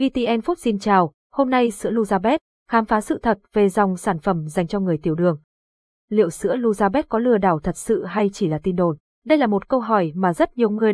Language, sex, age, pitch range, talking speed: Vietnamese, female, 20-39, 185-230 Hz, 235 wpm